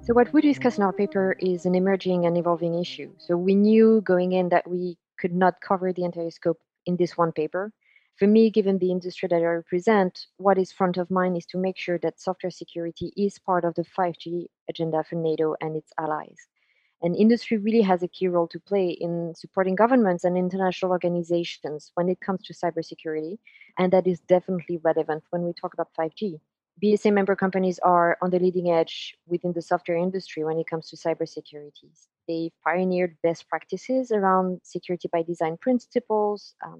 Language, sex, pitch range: English, female, 170-195 Hz